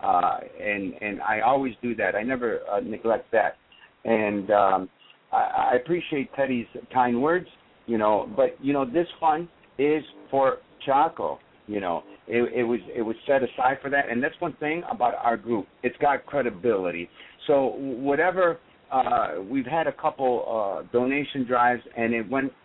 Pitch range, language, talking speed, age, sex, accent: 120-150 Hz, English, 170 wpm, 60-79, male, American